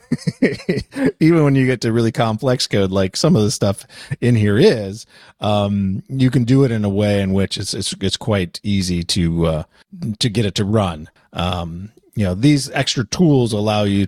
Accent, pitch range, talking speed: American, 95-120 Hz, 195 wpm